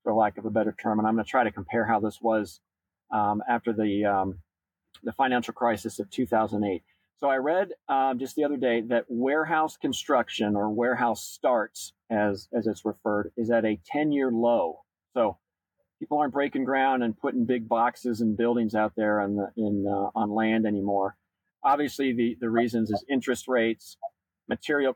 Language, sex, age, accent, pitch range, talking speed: English, male, 40-59, American, 105-125 Hz, 185 wpm